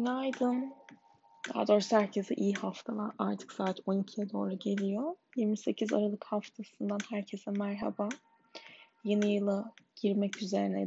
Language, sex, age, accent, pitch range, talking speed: Turkish, female, 10-29, native, 200-235 Hz, 115 wpm